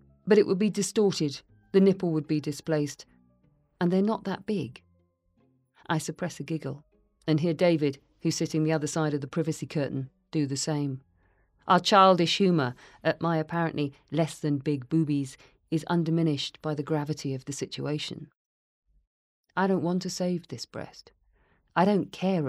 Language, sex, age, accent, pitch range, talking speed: English, female, 40-59, British, 140-165 Hz, 160 wpm